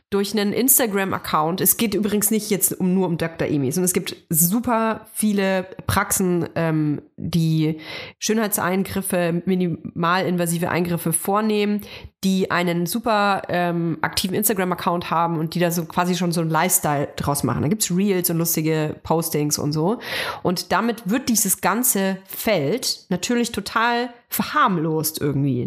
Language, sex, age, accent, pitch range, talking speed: German, female, 30-49, German, 170-220 Hz, 145 wpm